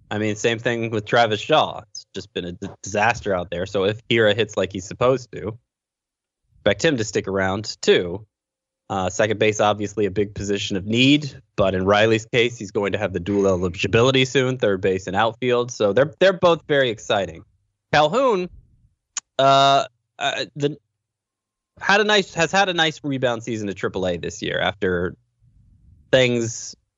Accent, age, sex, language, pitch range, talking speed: American, 20-39, male, English, 95-120 Hz, 175 wpm